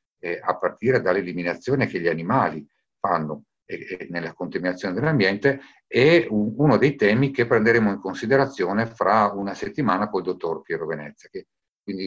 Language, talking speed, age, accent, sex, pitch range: Italian, 155 wpm, 50-69, native, male, 90-135 Hz